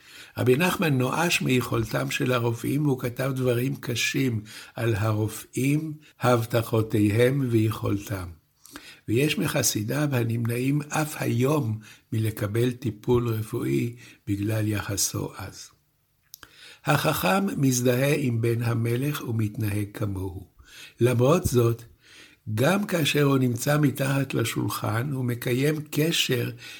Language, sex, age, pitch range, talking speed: Hebrew, male, 60-79, 110-140 Hz, 95 wpm